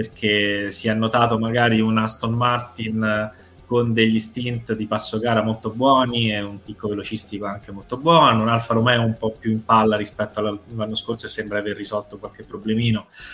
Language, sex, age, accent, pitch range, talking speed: Italian, male, 20-39, native, 110-140 Hz, 180 wpm